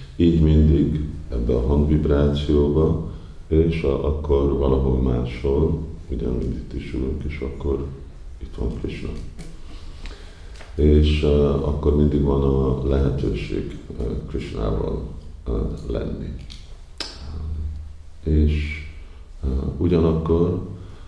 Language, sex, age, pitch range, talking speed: Hungarian, male, 50-69, 65-75 Hz, 80 wpm